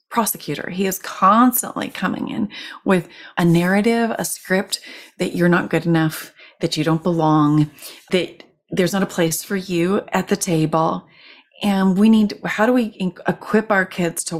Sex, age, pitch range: female, 30-49, 175-235 Hz